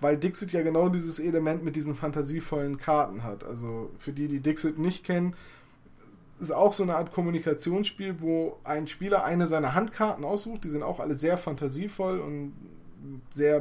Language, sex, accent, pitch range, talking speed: German, male, German, 145-175 Hz, 170 wpm